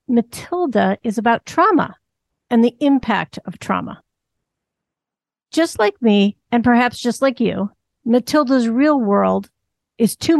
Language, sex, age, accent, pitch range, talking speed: English, female, 50-69, American, 210-250 Hz, 125 wpm